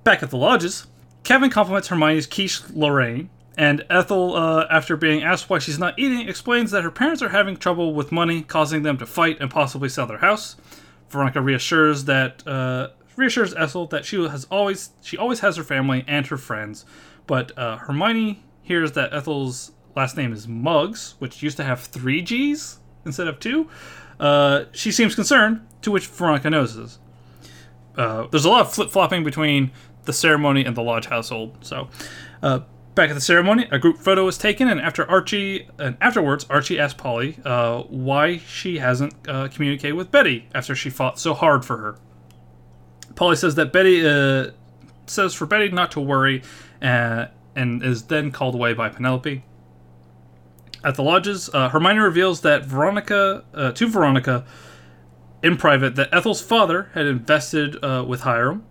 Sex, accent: male, American